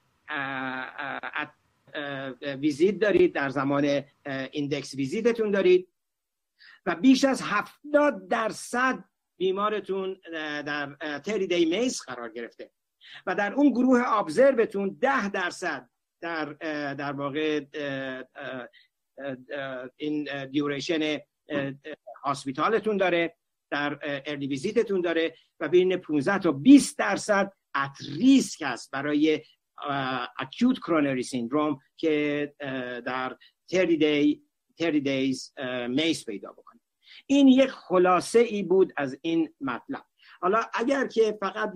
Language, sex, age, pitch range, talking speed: Persian, male, 50-69, 140-210 Hz, 100 wpm